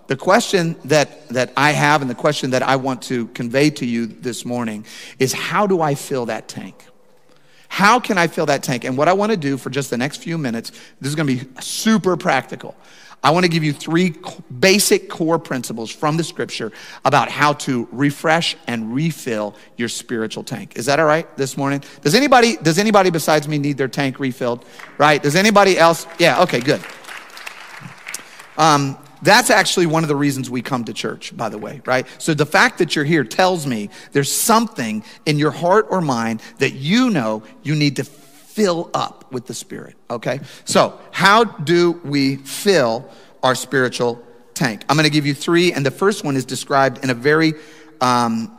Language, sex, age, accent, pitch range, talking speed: English, male, 40-59, American, 130-170 Hz, 200 wpm